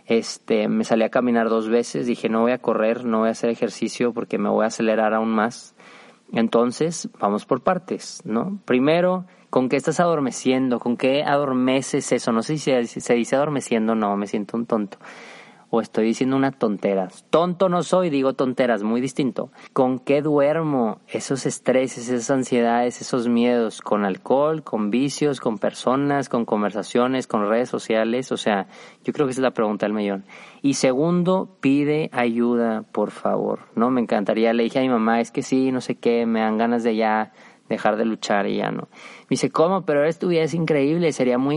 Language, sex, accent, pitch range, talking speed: Spanish, male, Mexican, 115-145 Hz, 190 wpm